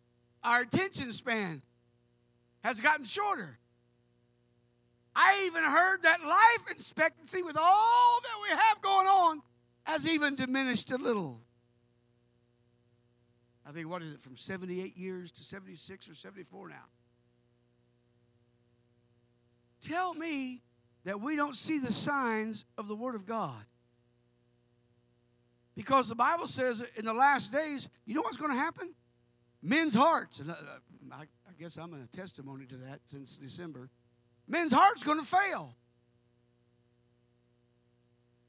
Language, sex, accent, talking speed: English, male, American, 130 wpm